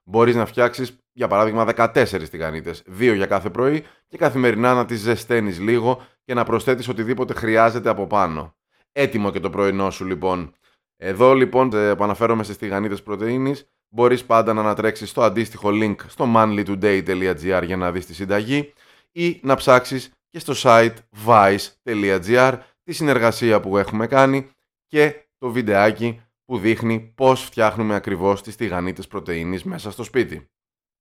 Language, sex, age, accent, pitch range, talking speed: Greek, male, 20-39, native, 100-125 Hz, 150 wpm